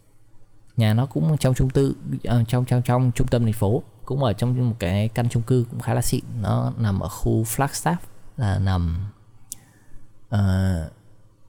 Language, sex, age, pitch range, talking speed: Vietnamese, male, 20-39, 105-120 Hz, 170 wpm